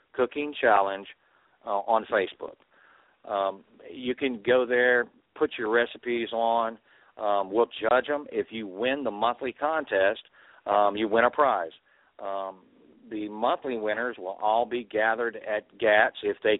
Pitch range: 100-120 Hz